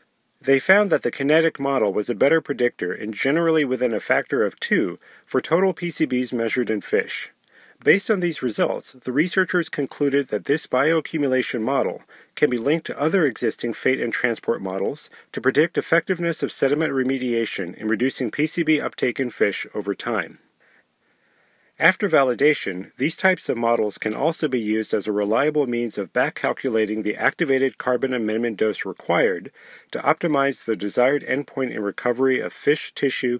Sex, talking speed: male, 160 wpm